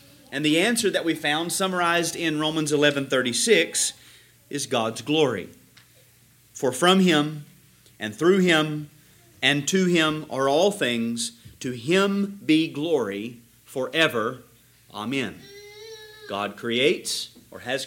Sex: male